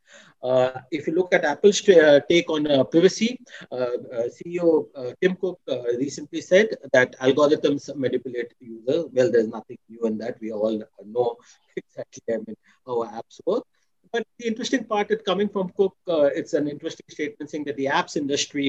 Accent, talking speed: Indian, 175 wpm